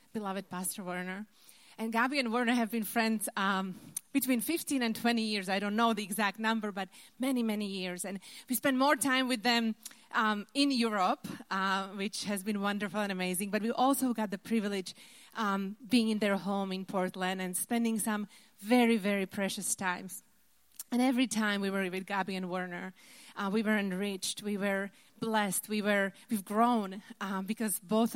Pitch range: 190-230 Hz